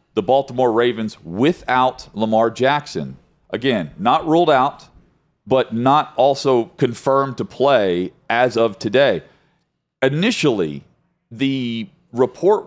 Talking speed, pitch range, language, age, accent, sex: 105 wpm, 110-145 Hz, English, 40-59, American, male